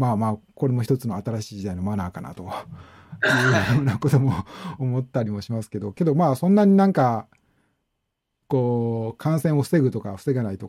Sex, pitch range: male, 105-145 Hz